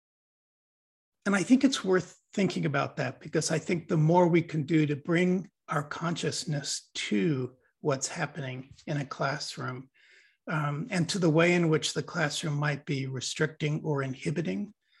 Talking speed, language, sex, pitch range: 160 wpm, English, male, 145-175 Hz